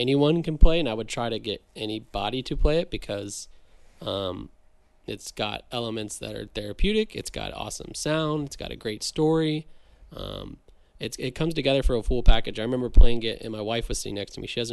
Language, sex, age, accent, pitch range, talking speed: English, male, 20-39, American, 110-135 Hz, 210 wpm